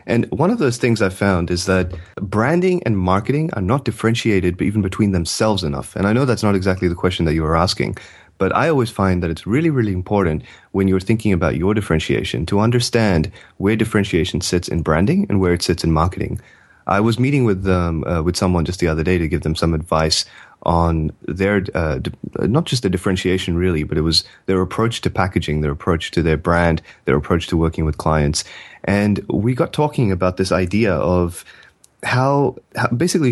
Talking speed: 205 wpm